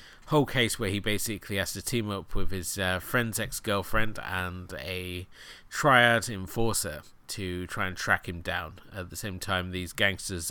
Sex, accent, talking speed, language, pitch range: male, British, 170 wpm, English, 90-110 Hz